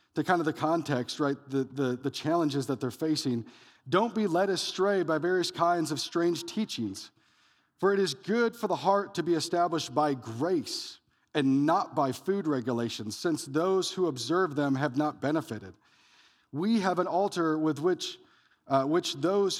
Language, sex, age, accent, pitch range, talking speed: English, male, 40-59, American, 145-185 Hz, 175 wpm